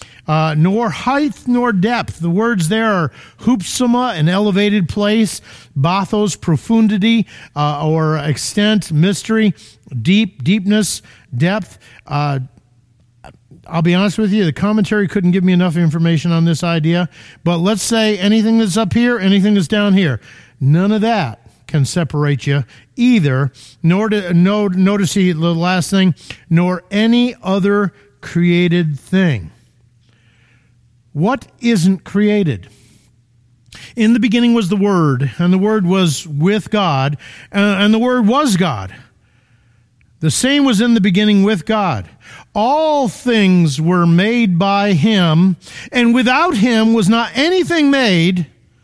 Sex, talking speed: male, 135 wpm